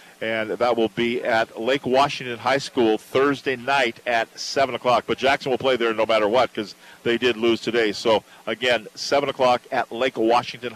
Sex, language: male, English